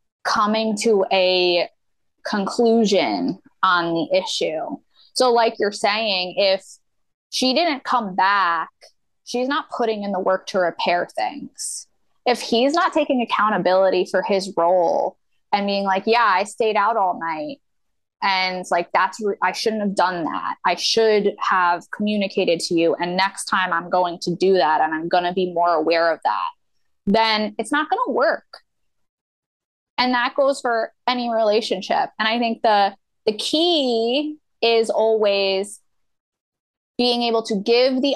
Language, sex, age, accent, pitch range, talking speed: English, female, 20-39, American, 190-245 Hz, 155 wpm